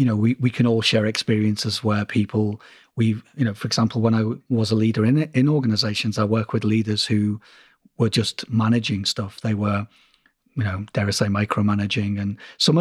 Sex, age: male, 30-49